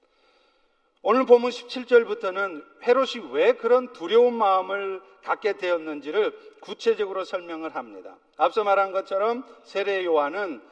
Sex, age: male, 50-69